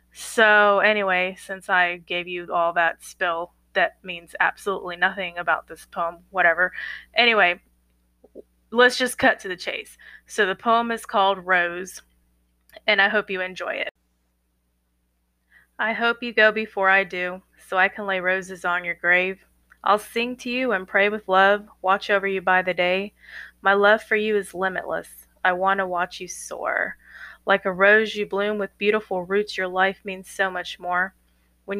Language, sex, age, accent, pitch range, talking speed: English, female, 20-39, American, 180-210 Hz, 175 wpm